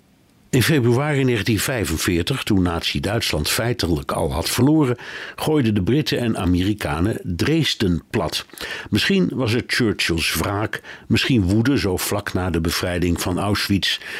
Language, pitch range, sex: Dutch, 90-125 Hz, male